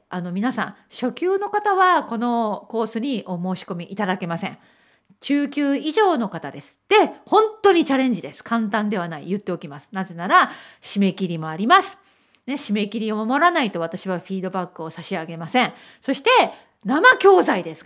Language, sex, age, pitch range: Japanese, female, 40-59, 195-325 Hz